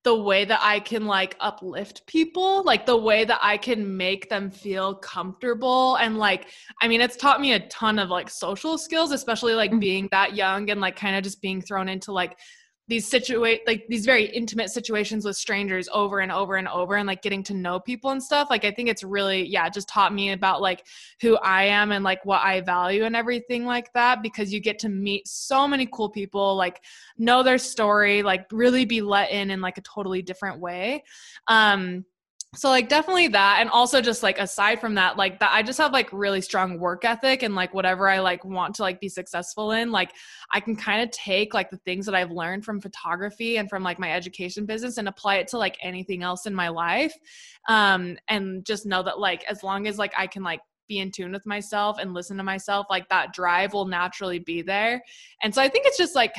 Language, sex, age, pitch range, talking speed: English, female, 20-39, 190-230 Hz, 225 wpm